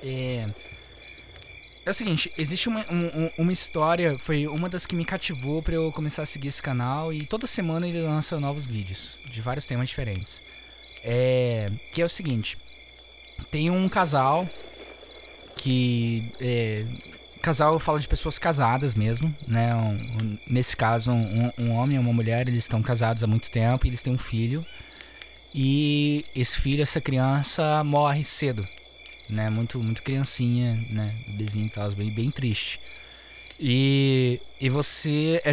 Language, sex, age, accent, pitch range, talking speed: Portuguese, male, 20-39, Brazilian, 115-150 Hz, 155 wpm